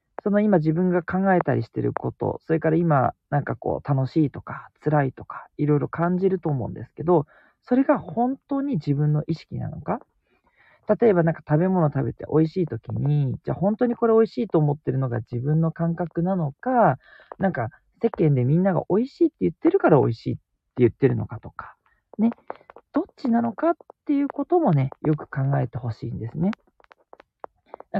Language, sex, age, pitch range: Japanese, male, 40-59, 135-200 Hz